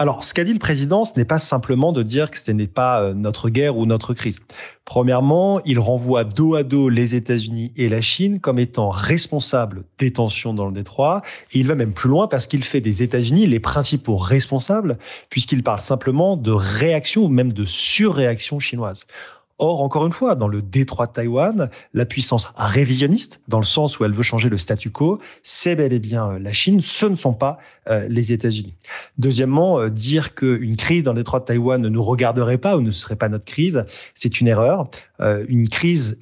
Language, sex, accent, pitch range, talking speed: French, male, French, 115-145 Hz, 205 wpm